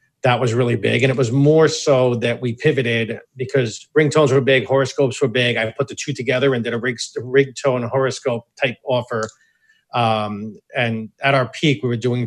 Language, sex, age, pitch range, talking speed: English, male, 40-59, 110-125 Hz, 195 wpm